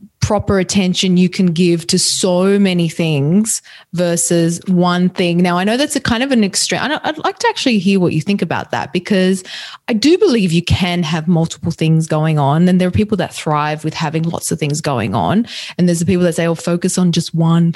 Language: English